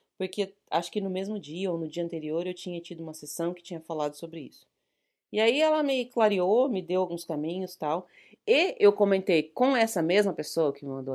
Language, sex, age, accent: Portuguese, female, 30-49, Brazilian